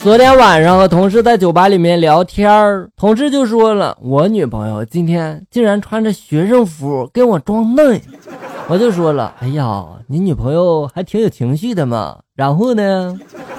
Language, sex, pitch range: Chinese, male, 130-210 Hz